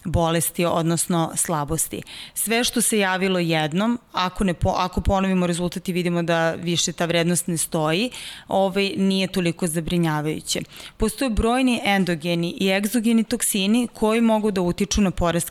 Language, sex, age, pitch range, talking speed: Slovak, female, 30-49, 175-210 Hz, 145 wpm